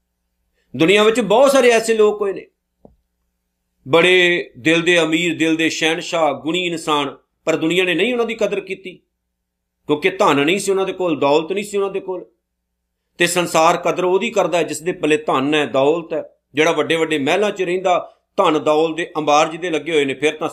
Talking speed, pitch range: 195 wpm, 145-205 Hz